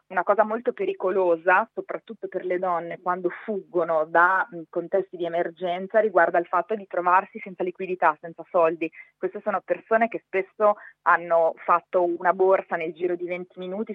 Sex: female